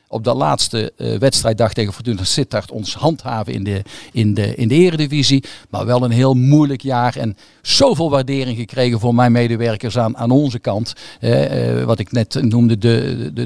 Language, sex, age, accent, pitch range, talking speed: Dutch, male, 50-69, Dutch, 110-135 Hz, 185 wpm